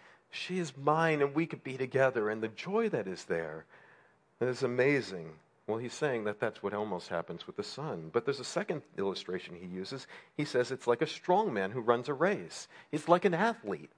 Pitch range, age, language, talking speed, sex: 105-160 Hz, 40-59, English, 215 wpm, male